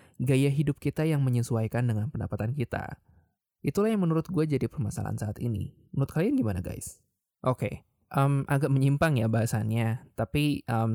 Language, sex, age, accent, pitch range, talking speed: Indonesian, male, 20-39, native, 110-140 Hz, 160 wpm